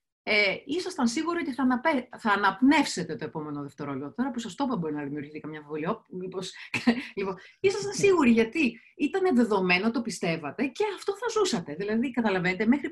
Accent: native